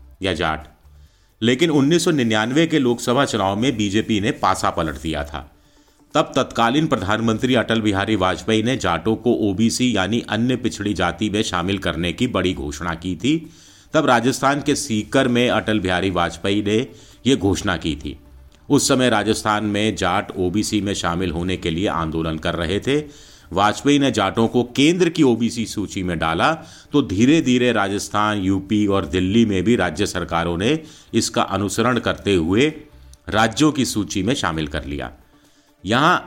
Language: Hindi